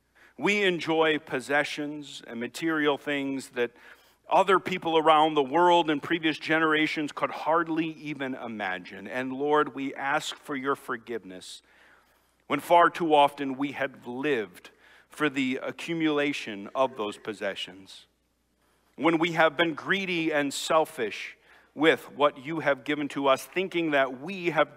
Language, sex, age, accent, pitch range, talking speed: English, male, 50-69, American, 120-155 Hz, 140 wpm